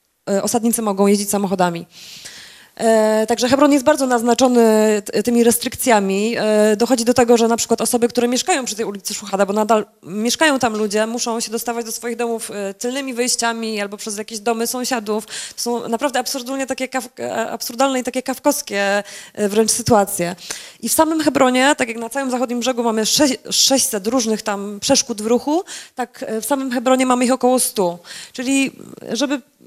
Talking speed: 160 wpm